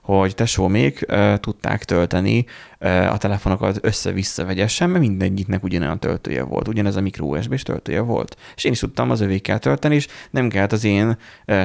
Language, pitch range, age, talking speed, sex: Hungarian, 90-110 Hz, 30-49, 180 wpm, male